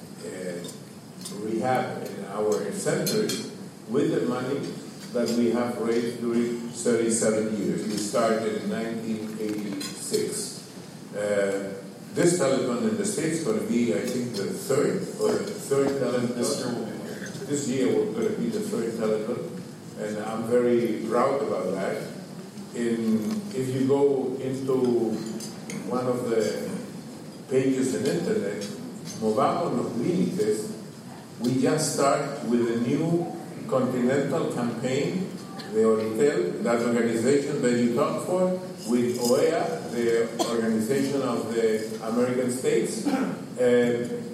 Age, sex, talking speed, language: 50-69, male, 125 wpm, Spanish